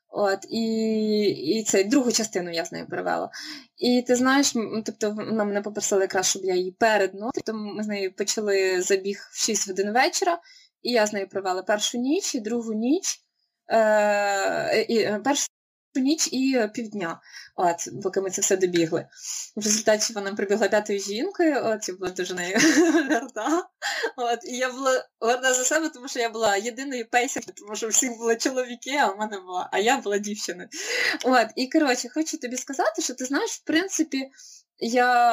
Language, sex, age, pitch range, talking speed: Ukrainian, female, 20-39, 215-295 Hz, 175 wpm